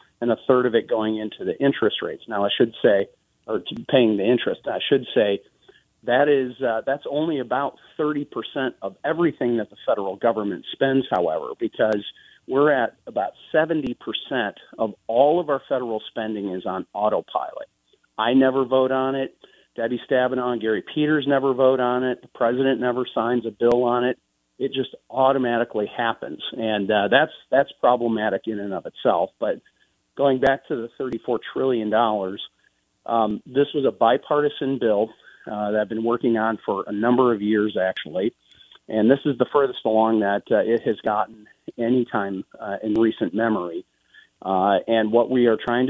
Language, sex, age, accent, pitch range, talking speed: English, male, 40-59, American, 110-130 Hz, 175 wpm